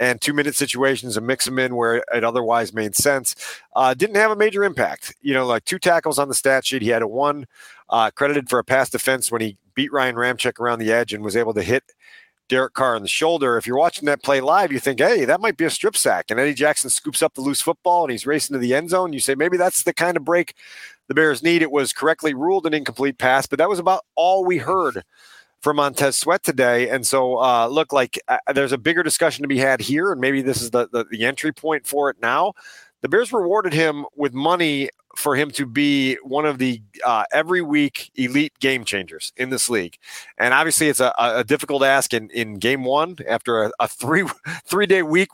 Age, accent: 40-59, American